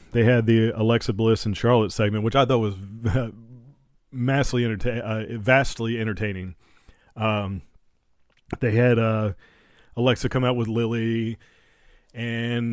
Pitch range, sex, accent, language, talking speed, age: 100-120 Hz, male, American, English, 125 wpm, 30-49